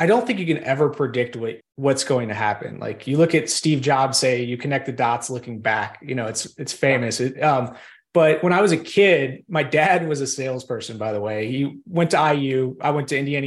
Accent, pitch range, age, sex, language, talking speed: American, 130-160 Hz, 30-49, male, English, 240 wpm